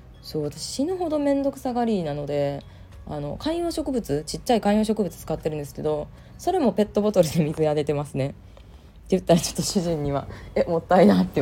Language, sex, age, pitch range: Japanese, female, 20-39, 135-205 Hz